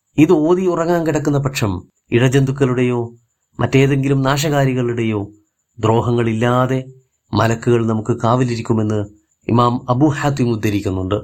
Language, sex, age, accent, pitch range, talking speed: Malayalam, male, 30-49, native, 110-145 Hz, 75 wpm